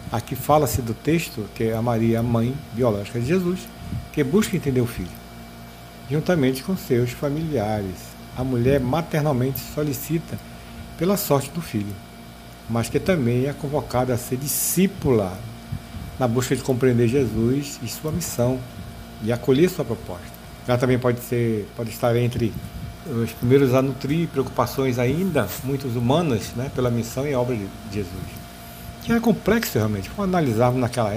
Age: 60-79